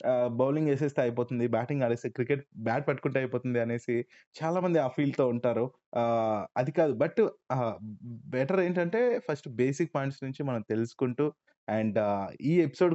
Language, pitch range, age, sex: Telugu, 115-140 Hz, 20-39, male